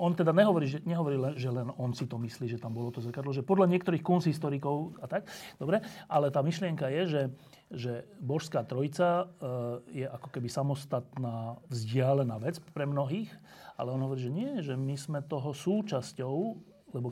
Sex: male